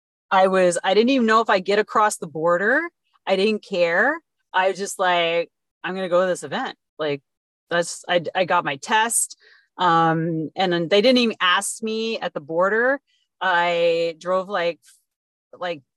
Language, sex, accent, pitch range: English, female, American, 180-235 Hz